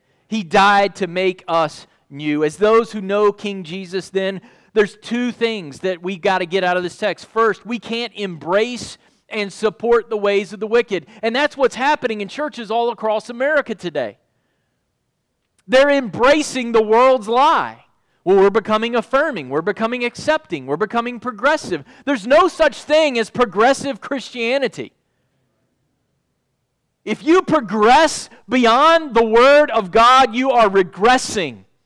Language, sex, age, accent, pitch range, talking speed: English, male, 40-59, American, 190-250 Hz, 150 wpm